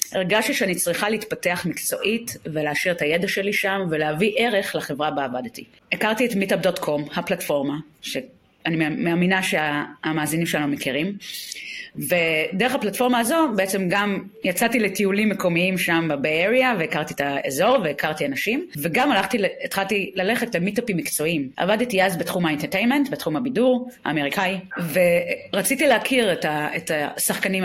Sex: female